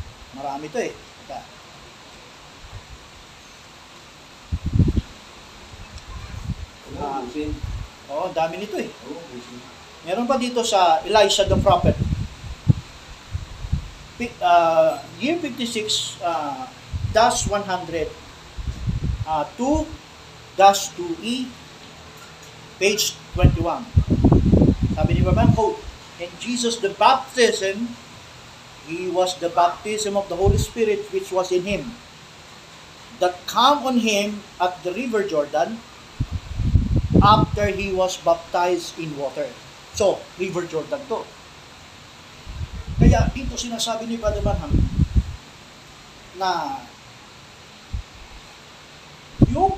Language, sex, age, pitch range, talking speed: Filipino, male, 40-59, 145-220 Hz, 95 wpm